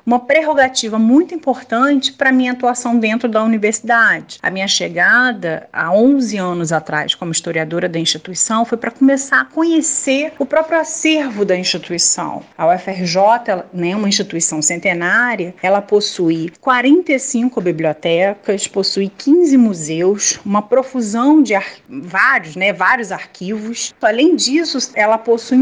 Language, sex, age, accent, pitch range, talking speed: Portuguese, female, 40-59, Brazilian, 190-270 Hz, 135 wpm